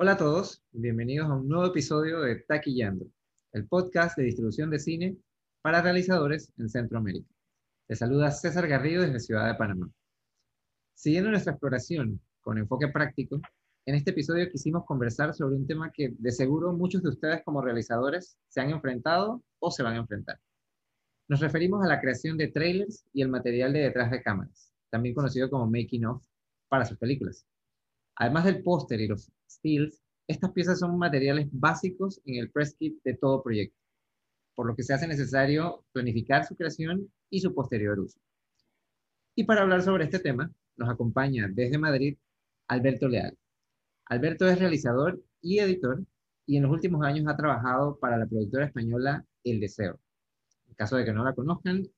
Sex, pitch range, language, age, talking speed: male, 125-165 Hz, Spanish, 30-49, 170 wpm